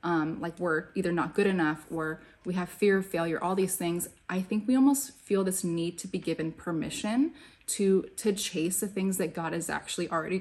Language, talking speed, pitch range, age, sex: English, 215 wpm, 175-205 Hz, 20-39, female